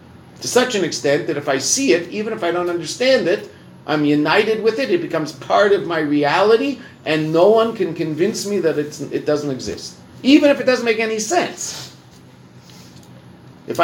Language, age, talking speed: English, 50-69, 185 wpm